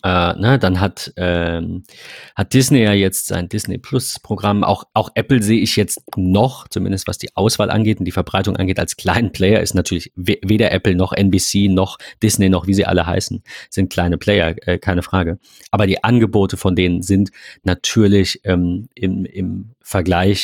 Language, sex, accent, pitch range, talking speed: German, male, German, 95-110 Hz, 165 wpm